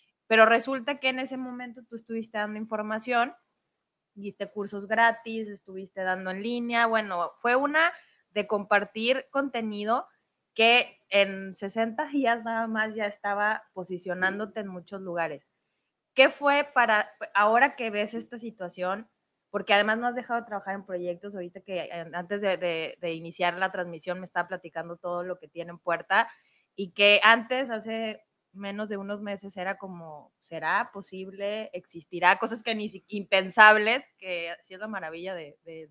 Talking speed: 160 wpm